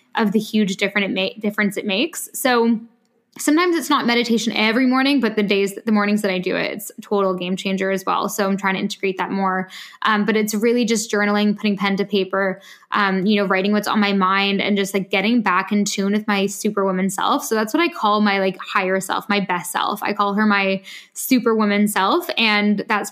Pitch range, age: 200-230 Hz, 10-29